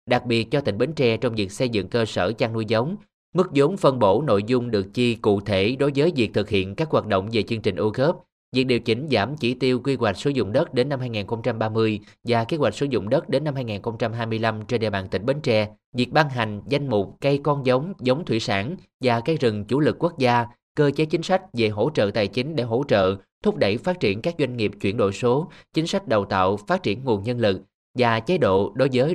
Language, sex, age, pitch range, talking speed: Vietnamese, male, 20-39, 105-140 Hz, 250 wpm